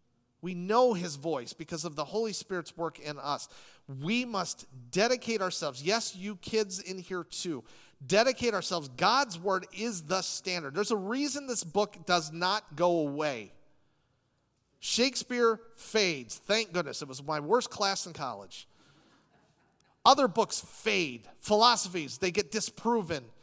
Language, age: English, 40-59